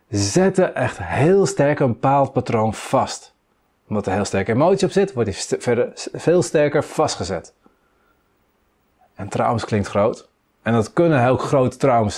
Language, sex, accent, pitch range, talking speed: Dutch, male, Dutch, 115-160 Hz, 155 wpm